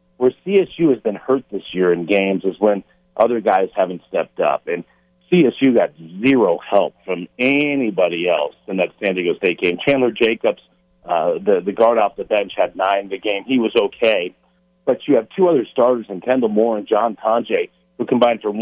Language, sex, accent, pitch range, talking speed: English, male, American, 95-130 Hz, 195 wpm